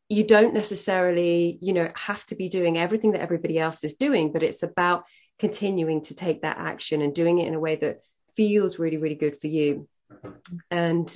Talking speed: 200 wpm